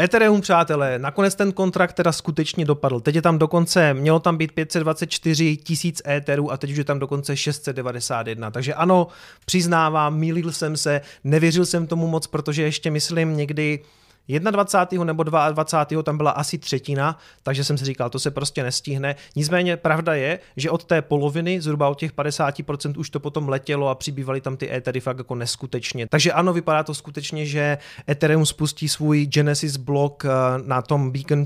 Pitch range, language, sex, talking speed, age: 140-160 Hz, Czech, male, 175 wpm, 30-49